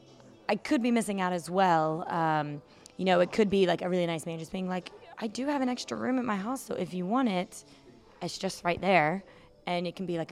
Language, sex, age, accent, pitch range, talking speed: English, female, 20-39, American, 170-215 Hz, 250 wpm